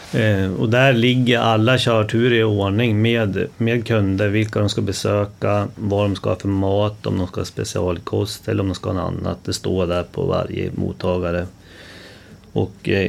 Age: 30-49